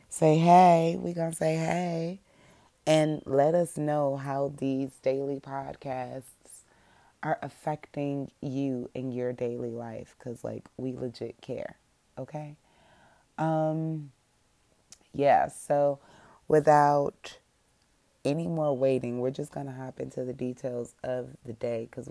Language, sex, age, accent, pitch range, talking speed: English, female, 30-49, American, 125-150 Hz, 120 wpm